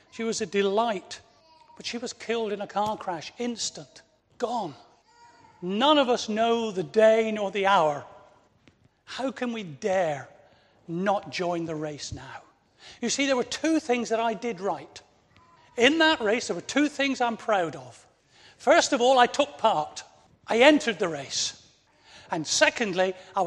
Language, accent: English, British